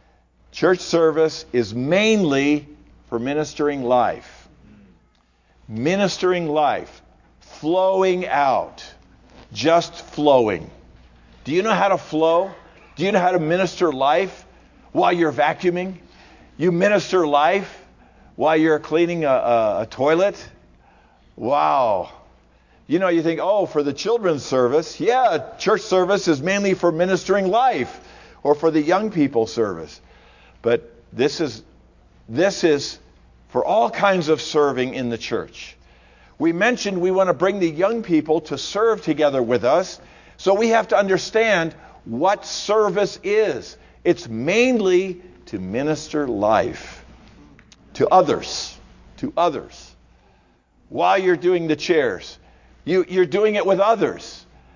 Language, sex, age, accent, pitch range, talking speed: English, male, 50-69, American, 135-185 Hz, 130 wpm